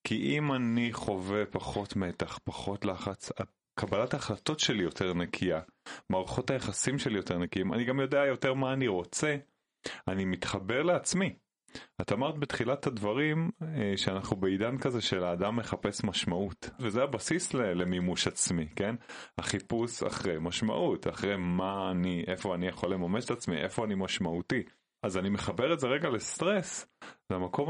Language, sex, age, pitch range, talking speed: Hebrew, male, 30-49, 90-115 Hz, 145 wpm